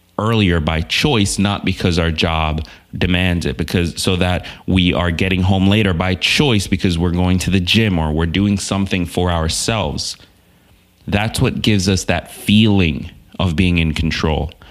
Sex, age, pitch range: male, 30-49, 80-95 Hz